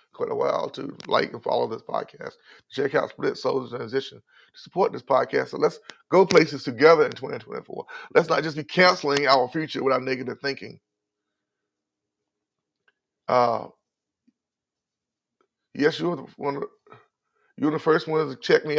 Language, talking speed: English, 155 wpm